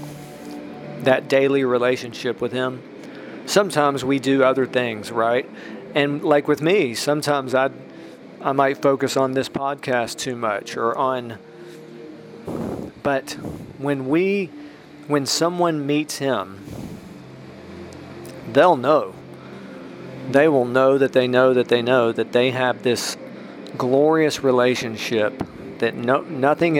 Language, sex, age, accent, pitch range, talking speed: English, male, 40-59, American, 120-145 Hz, 120 wpm